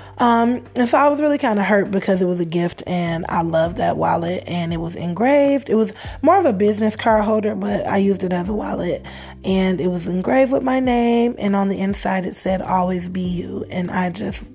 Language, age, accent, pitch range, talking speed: English, 20-39, American, 180-220 Hz, 235 wpm